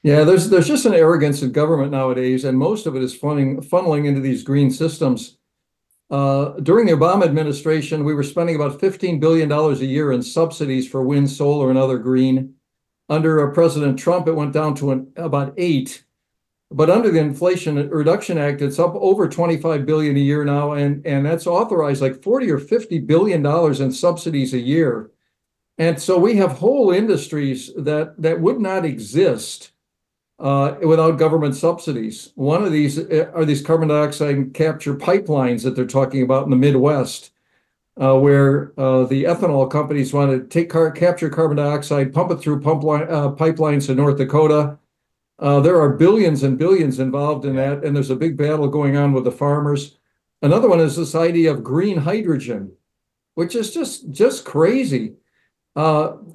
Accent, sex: American, male